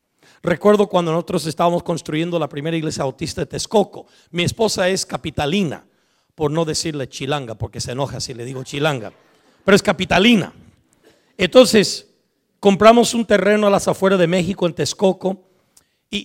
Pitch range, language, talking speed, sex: 160-205 Hz, English, 150 wpm, male